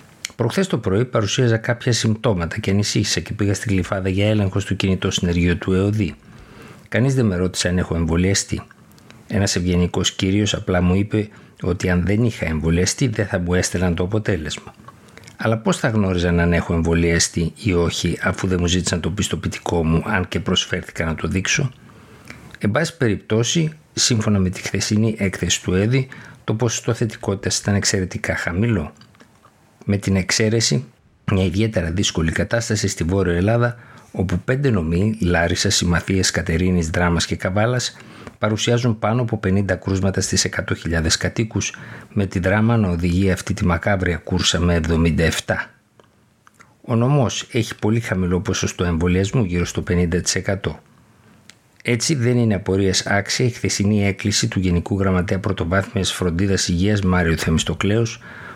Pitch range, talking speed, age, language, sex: 90-110 Hz, 145 wpm, 60-79, Greek, male